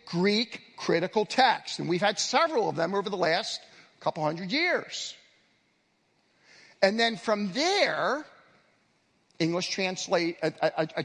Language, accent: English, American